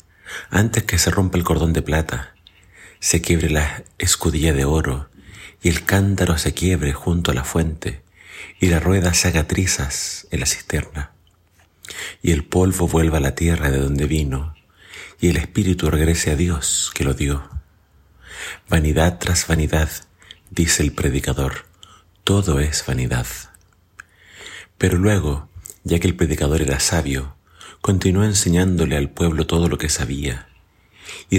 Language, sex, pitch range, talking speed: Spanish, male, 75-90 Hz, 145 wpm